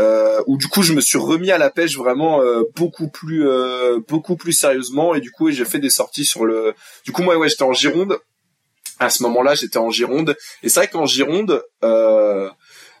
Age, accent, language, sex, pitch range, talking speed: 20-39, French, French, male, 125-170 Hz, 215 wpm